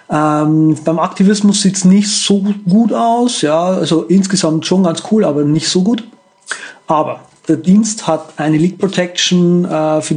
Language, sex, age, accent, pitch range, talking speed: German, male, 40-59, German, 150-185 Hz, 160 wpm